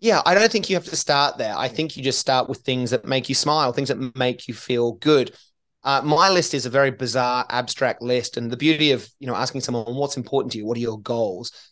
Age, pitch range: 30-49, 125-145 Hz